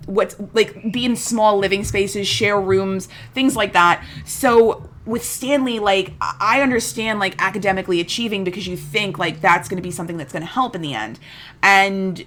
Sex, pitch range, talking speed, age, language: female, 190-240 Hz, 185 wpm, 20-39, English